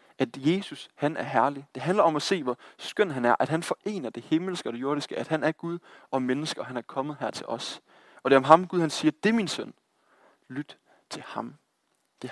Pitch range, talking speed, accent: 130-180 Hz, 250 wpm, native